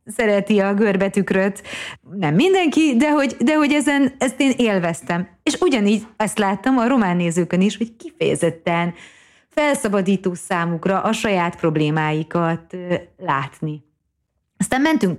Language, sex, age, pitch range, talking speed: Hungarian, female, 30-49, 170-235 Hz, 125 wpm